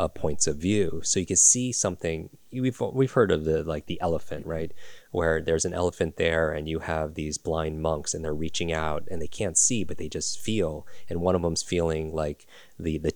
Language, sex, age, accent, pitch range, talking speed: English, male, 30-49, American, 80-90 Hz, 225 wpm